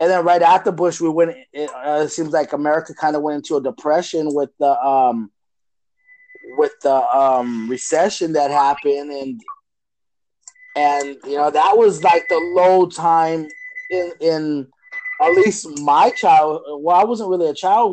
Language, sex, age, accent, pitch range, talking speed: English, male, 20-39, American, 150-180 Hz, 165 wpm